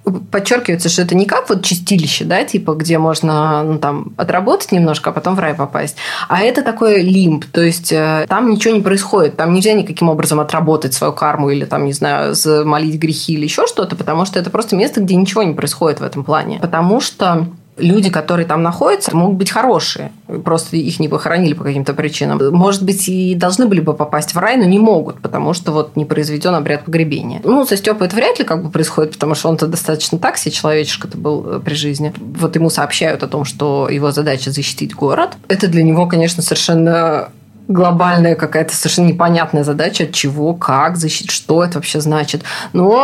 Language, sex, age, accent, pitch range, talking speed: Russian, female, 20-39, native, 155-195 Hz, 195 wpm